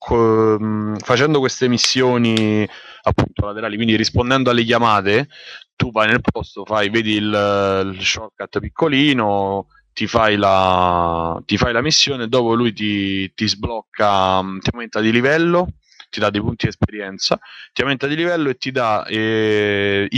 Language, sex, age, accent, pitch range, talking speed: Italian, male, 20-39, native, 100-115 Hz, 145 wpm